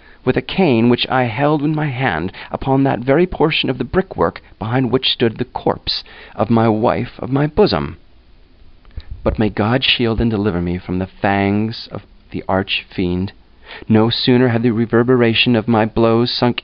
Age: 40-59